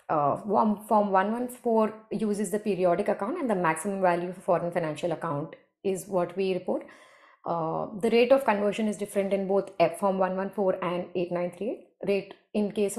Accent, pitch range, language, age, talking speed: Indian, 180-215 Hz, English, 30-49, 200 wpm